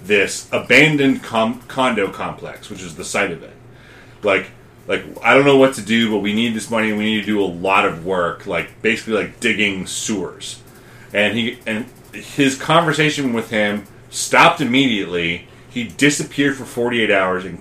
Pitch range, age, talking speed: 105-135 Hz, 30-49, 180 wpm